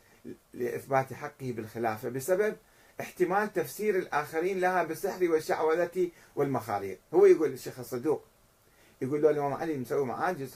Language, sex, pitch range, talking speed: Arabic, male, 120-180 Hz, 120 wpm